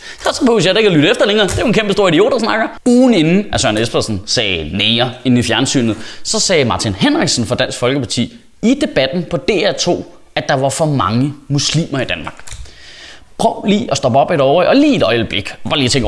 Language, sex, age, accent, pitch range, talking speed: Danish, male, 20-39, native, 140-235 Hz, 230 wpm